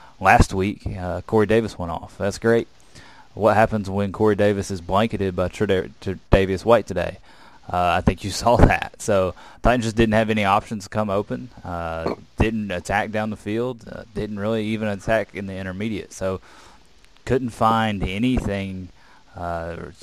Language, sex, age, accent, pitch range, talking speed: English, male, 20-39, American, 90-110 Hz, 170 wpm